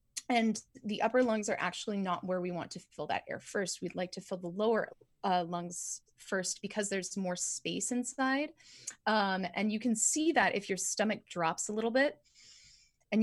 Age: 20-39